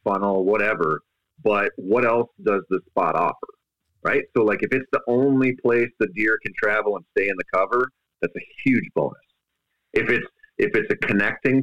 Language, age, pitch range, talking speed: English, 30-49, 95-140 Hz, 185 wpm